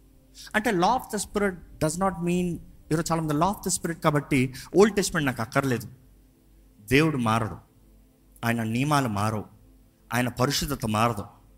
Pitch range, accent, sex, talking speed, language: 125-175 Hz, native, male, 140 wpm, Telugu